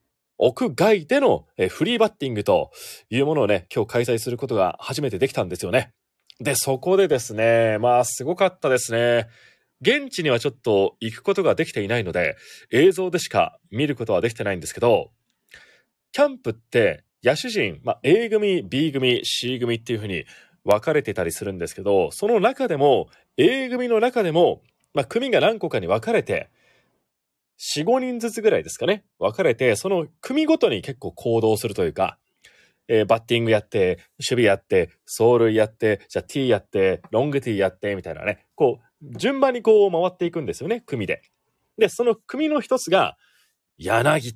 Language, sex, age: Japanese, male, 30-49